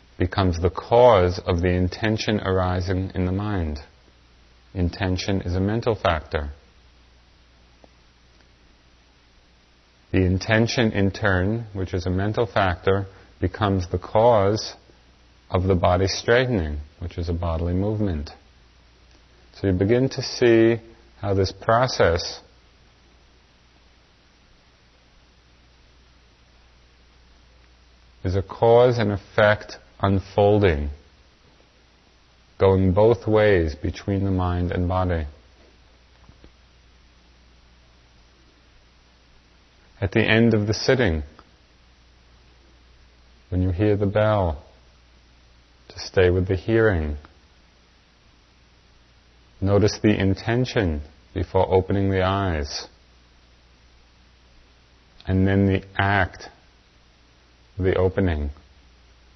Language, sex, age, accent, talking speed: English, male, 40-59, American, 90 wpm